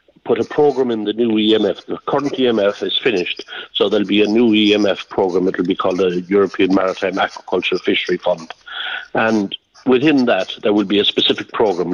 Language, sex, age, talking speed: English, male, 60-79, 185 wpm